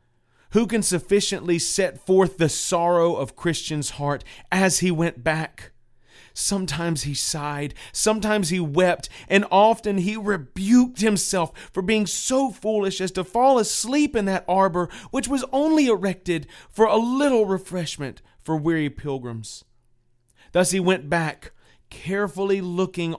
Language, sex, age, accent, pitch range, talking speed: English, male, 30-49, American, 145-205 Hz, 135 wpm